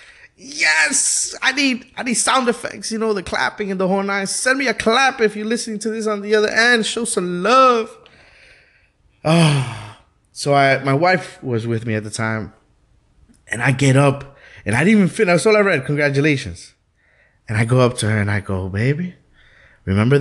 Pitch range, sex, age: 115-180 Hz, male, 20-39